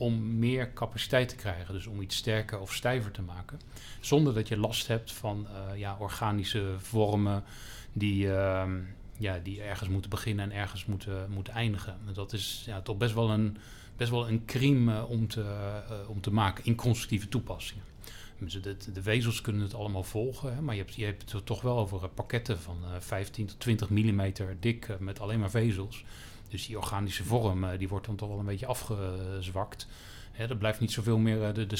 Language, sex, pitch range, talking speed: Dutch, male, 100-120 Hz, 190 wpm